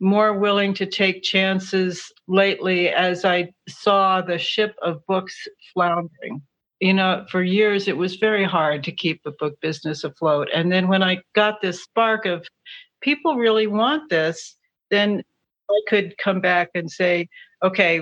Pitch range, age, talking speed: 170-200 Hz, 60-79, 160 wpm